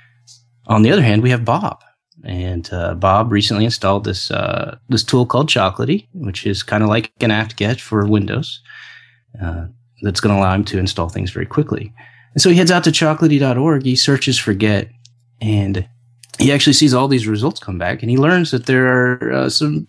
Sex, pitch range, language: male, 100-130 Hz, English